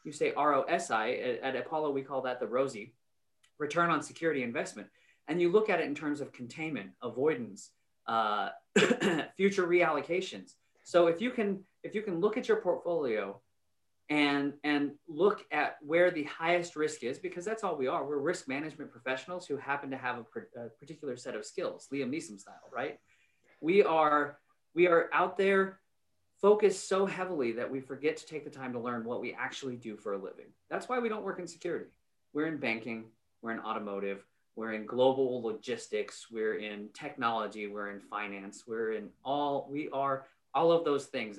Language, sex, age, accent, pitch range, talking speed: English, male, 40-59, American, 115-180 Hz, 190 wpm